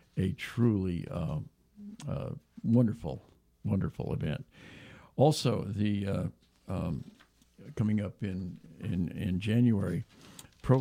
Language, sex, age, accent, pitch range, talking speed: English, male, 60-79, American, 100-125 Hz, 100 wpm